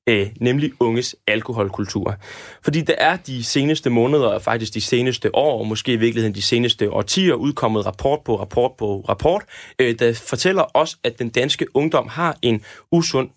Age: 20-39